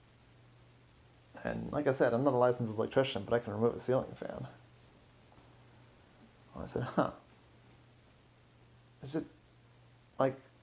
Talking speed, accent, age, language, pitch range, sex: 130 wpm, American, 30-49, English, 115-130 Hz, male